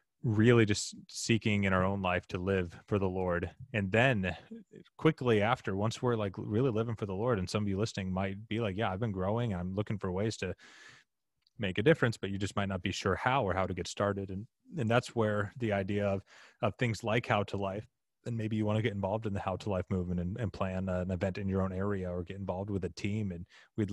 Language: English